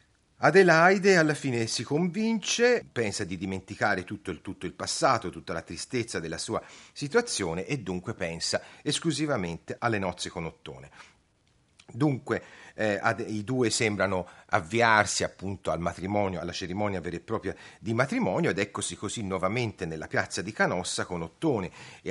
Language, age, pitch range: Italian, 40-59, 95-120 Hz